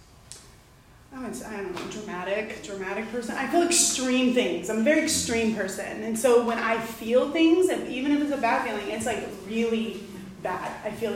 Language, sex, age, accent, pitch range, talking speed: English, female, 20-39, American, 205-255 Hz, 190 wpm